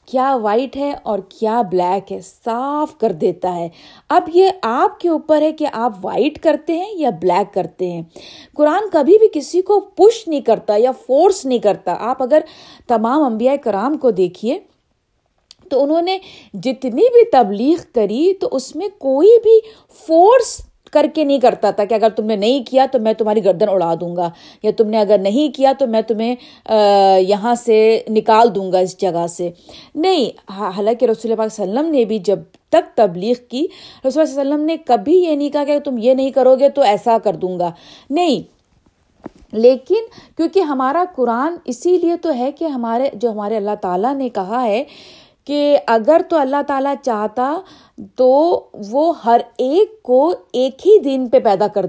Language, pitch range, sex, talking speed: Urdu, 220-315 Hz, female, 185 wpm